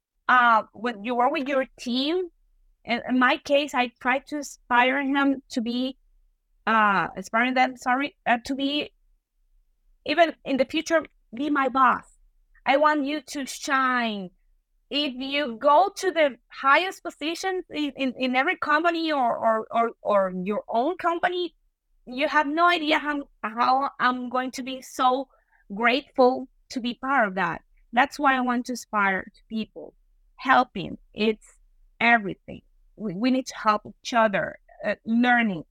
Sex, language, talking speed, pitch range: female, English, 155 wpm, 225-275 Hz